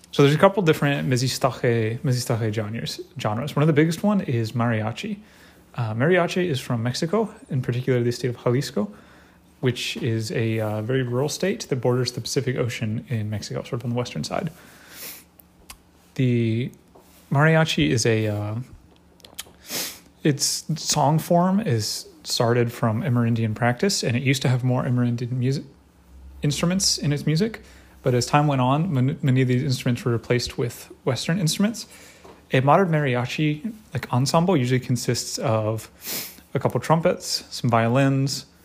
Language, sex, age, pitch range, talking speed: English, male, 30-49, 115-145 Hz, 155 wpm